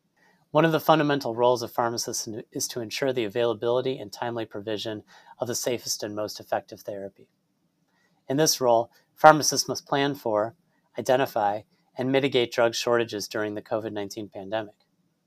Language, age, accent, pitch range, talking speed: English, 30-49, American, 115-135 Hz, 150 wpm